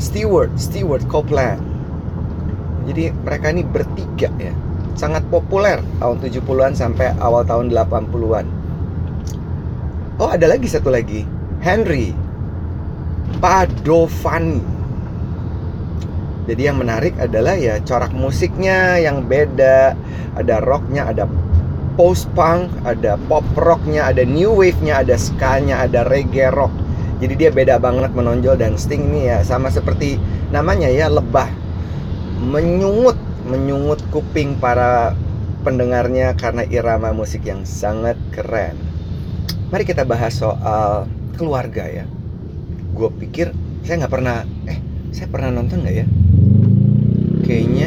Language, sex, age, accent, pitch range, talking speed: Indonesian, male, 30-49, native, 85-115 Hz, 115 wpm